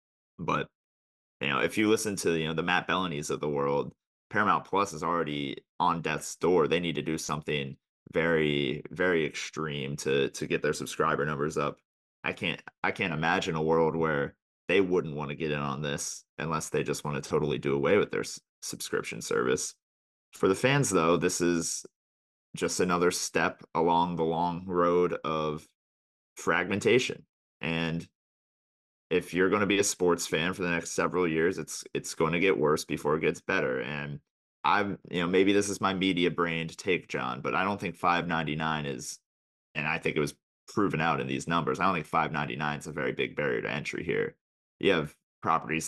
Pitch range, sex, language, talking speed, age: 70-85 Hz, male, English, 200 wpm, 30-49